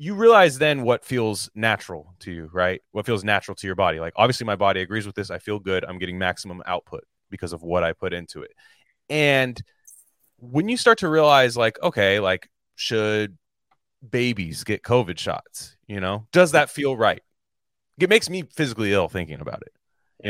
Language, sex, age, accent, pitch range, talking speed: English, male, 30-49, American, 95-135 Hz, 190 wpm